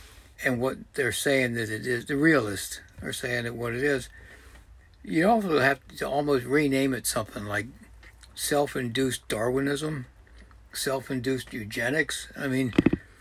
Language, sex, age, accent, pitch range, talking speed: English, male, 60-79, American, 120-160 Hz, 145 wpm